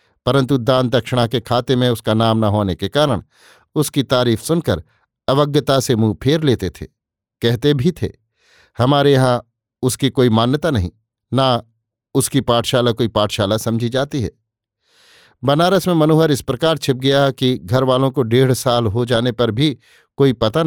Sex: male